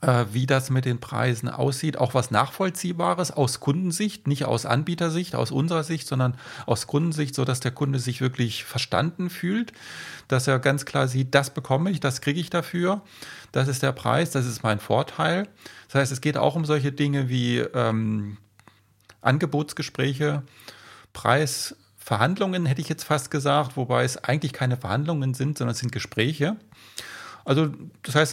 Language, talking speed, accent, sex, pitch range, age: German, 165 wpm, German, male, 120-150 Hz, 30-49